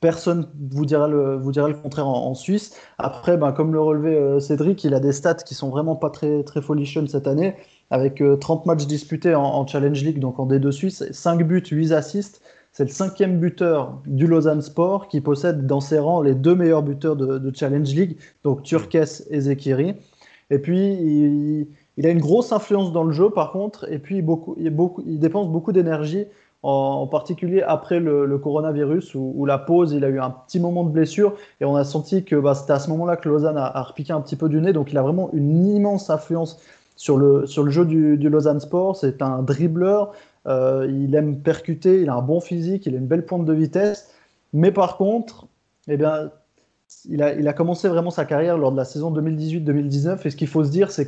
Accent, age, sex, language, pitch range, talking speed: French, 20-39, male, French, 145-175 Hz, 225 wpm